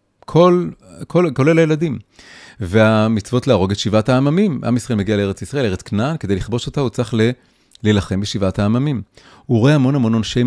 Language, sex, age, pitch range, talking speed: Hebrew, male, 30-49, 100-145 Hz, 165 wpm